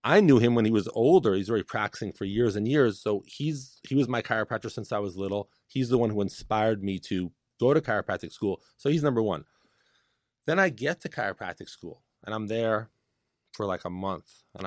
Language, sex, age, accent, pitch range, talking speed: English, male, 30-49, American, 100-130 Hz, 215 wpm